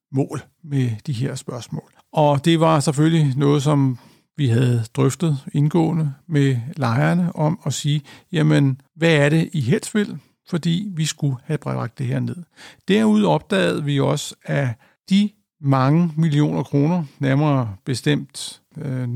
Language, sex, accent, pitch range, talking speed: Danish, male, native, 135-165 Hz, 145 wpm